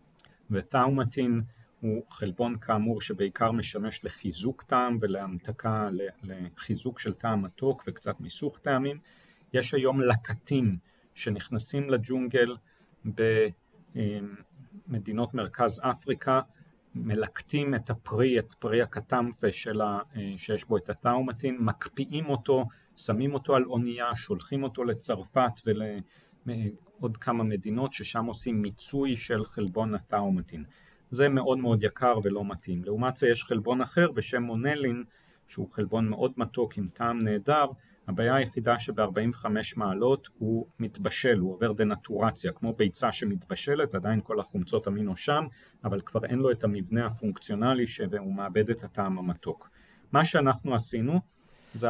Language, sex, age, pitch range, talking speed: Hebrew, male, 40-59, 105-135 Hz, 125 wpm